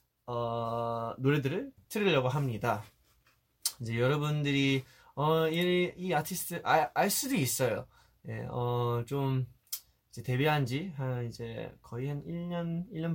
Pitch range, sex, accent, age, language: 115-160 Hz, male, native, 20-39, Korean